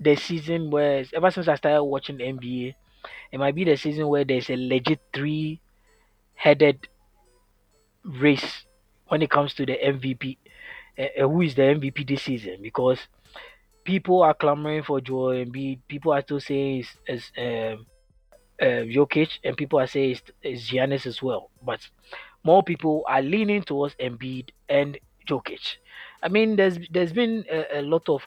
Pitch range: 135-160 Hz